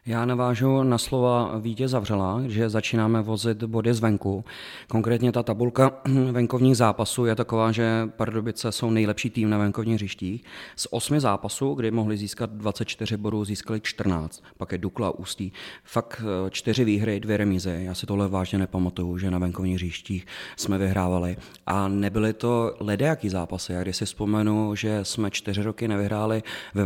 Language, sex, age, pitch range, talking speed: Czech, male, 30-49, 95-110 Hz, 160 wpm